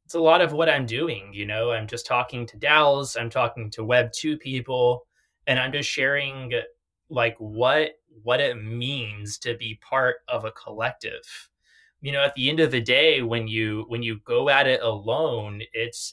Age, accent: 20-39, American